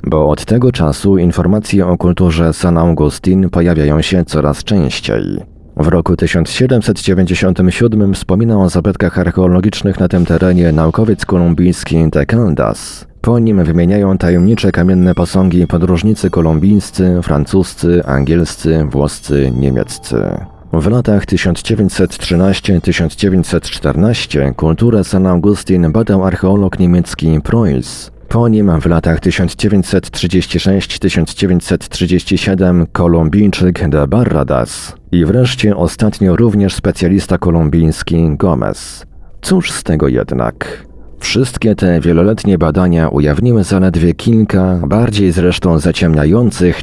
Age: 40-59